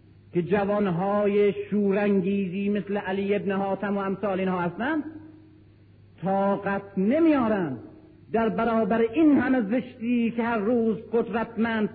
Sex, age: male, 50-69